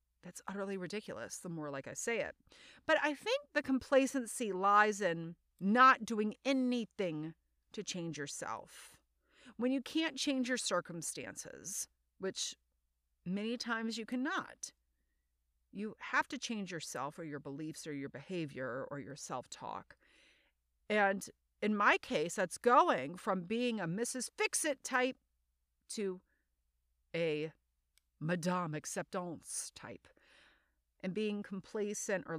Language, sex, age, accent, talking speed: English, female, 40-59, American, 125 wpm